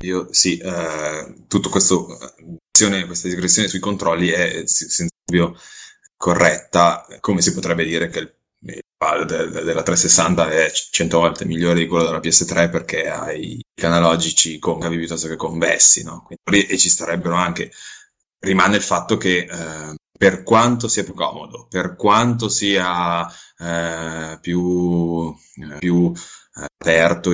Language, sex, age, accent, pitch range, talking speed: Italian, male, 20-39, native, 85-95 Hz, 145 wpm